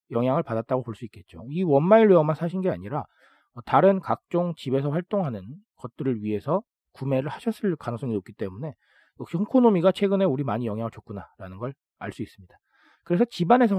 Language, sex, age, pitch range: Korean, male, 40-59, 115-190 Hz